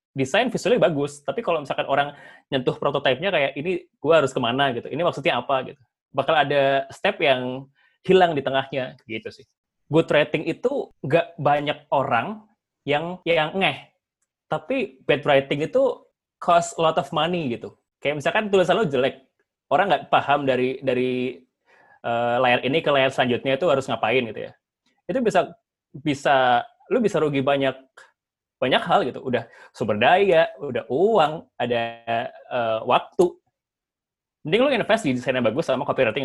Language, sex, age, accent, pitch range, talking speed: Indonesian, male, 20-39, native, 125-165 Hz, 155 wpm